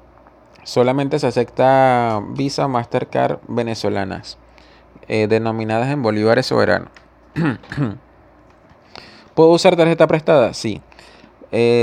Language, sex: Spanish, male